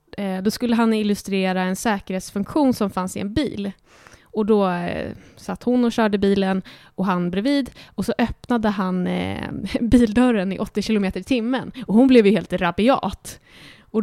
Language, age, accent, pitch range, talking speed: Swedish, 20-39, native, 195-250 Hz, 170 wpm